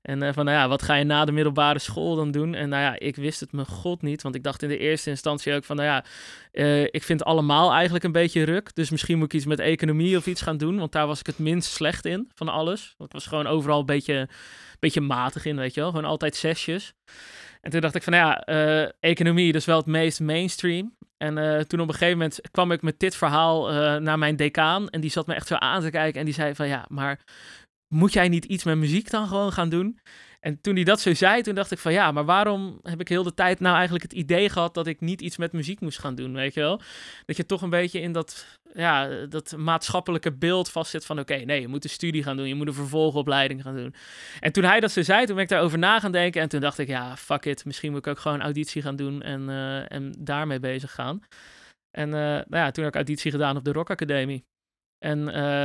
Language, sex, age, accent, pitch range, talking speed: Dutch, male, 20-39, Dutch, 145-175 Hz, 260 wpm